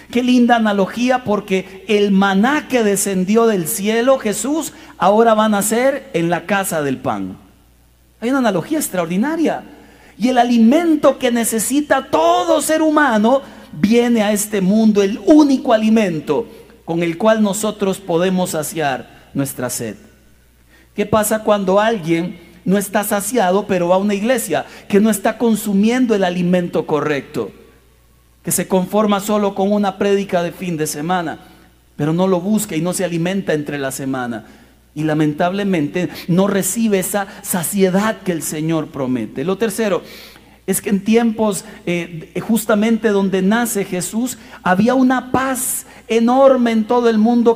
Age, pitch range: 50-69, 175-230 Hz